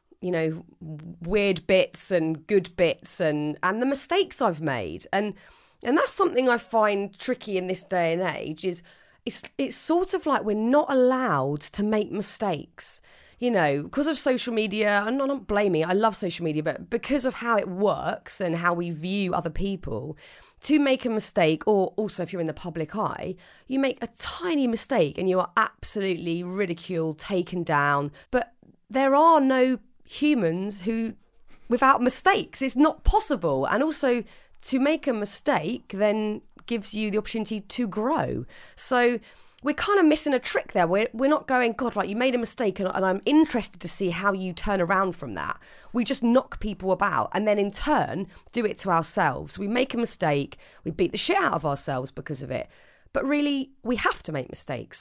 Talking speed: 190 wpm